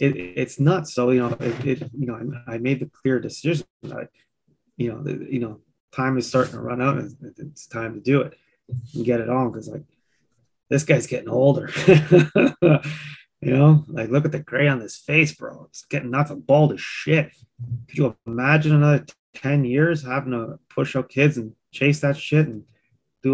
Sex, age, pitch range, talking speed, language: male, 20-39, 125-150 Hz, 205 wpm, English